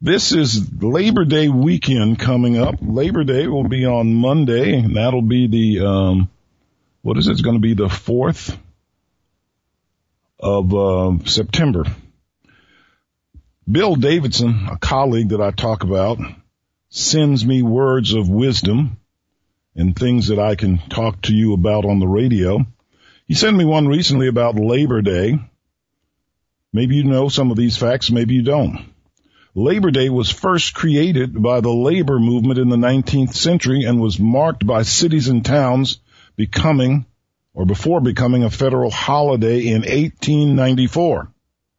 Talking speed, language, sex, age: 145 wpm, English, male, 50-69